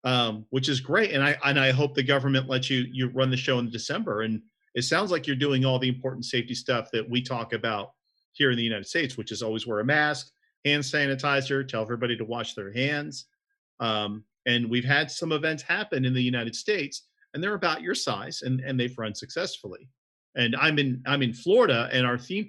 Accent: American